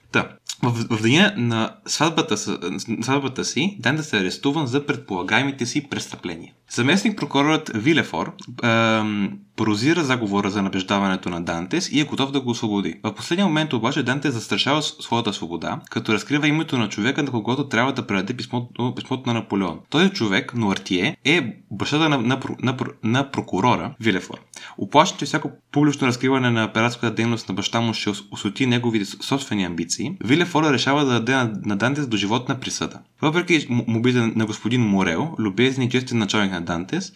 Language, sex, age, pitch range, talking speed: Bulgarian, male, 20-39, 110-140 Hz, 165 wpm